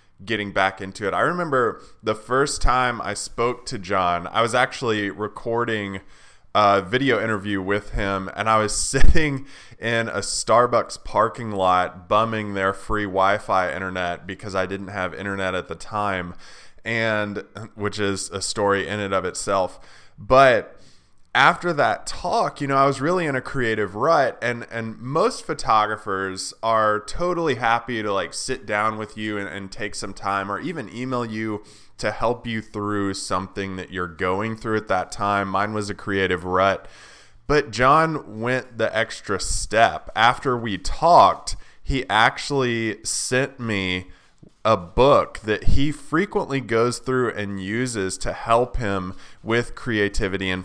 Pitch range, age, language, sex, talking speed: 95-115 Hz, 20-39, English, male, 160 wpm